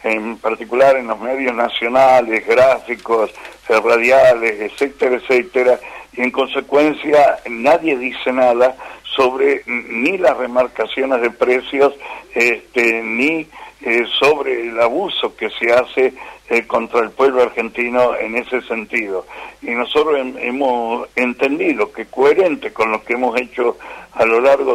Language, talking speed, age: Spanish, 130 wpm, 60-79